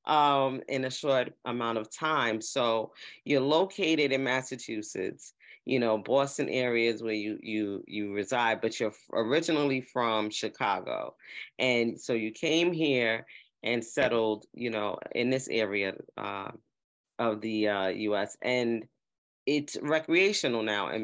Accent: American